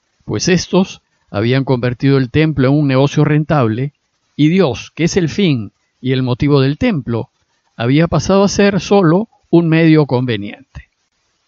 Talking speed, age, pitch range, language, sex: 150 wpm, 50-69, 130-175 Hz, Spanish, male